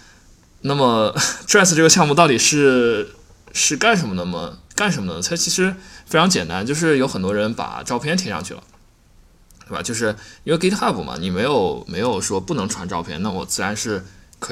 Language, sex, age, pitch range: Chinese, male, 20-39, 90-135 Hz